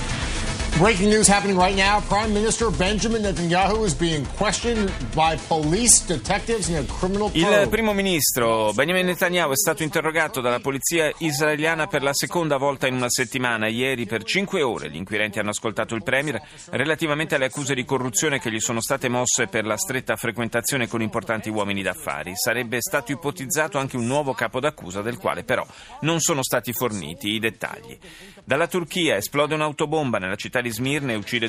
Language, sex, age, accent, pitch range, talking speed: Italian, male, 30-49, native, 110-155 Hz, 135 wpm